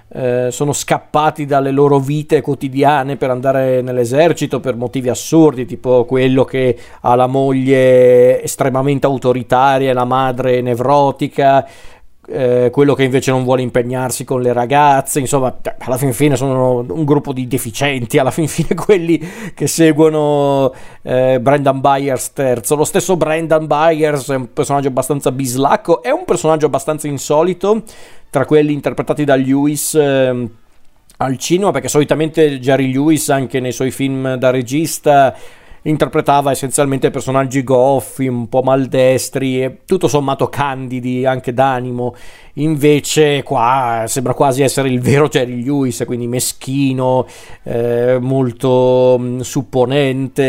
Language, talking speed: Italian, 135 wpm